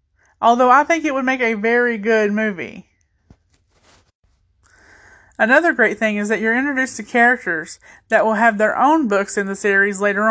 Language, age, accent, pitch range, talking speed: English, 20-39, American, 190-240 Hz, 170 wpm